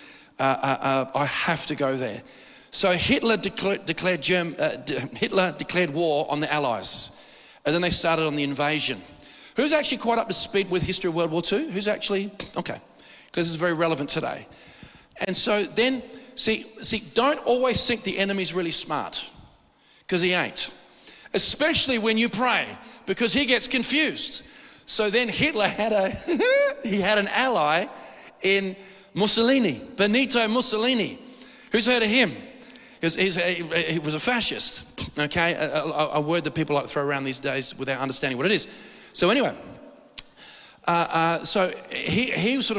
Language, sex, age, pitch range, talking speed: English, male, 40-59, 165-230 Hz, 165 wpm